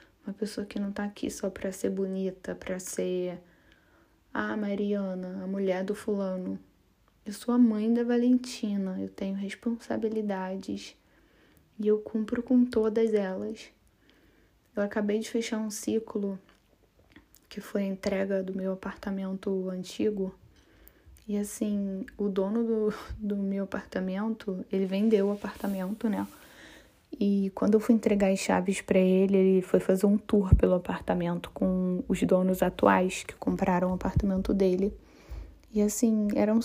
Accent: Brazilian